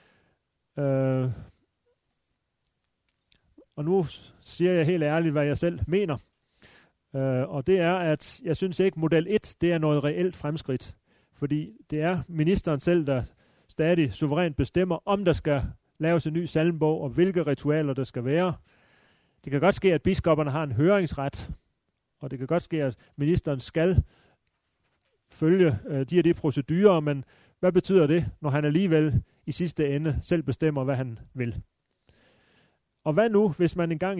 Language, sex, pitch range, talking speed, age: Danish, male, 135-180 Hz, 165 wpm, 30-49